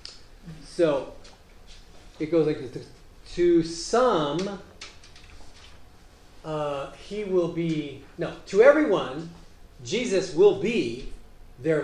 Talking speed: 90 wpm